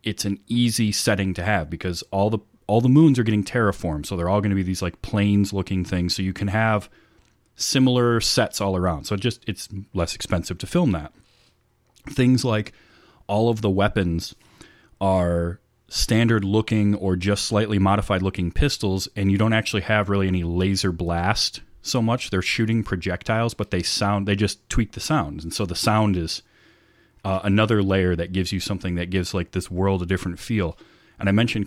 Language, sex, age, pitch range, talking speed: English, male, 30-49, 90-110 Hz, 195 wpm